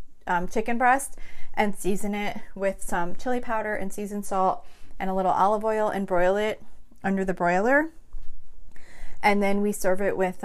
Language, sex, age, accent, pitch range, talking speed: English, female, 30-49, American, 185-230 Hz, 170 wpm